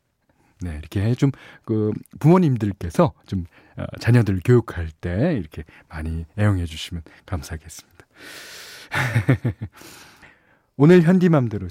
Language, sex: Korean, male